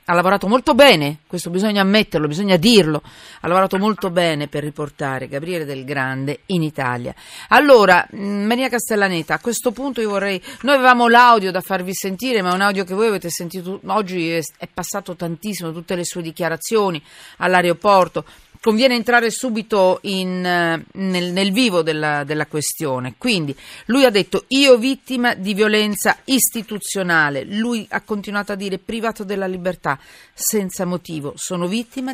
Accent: native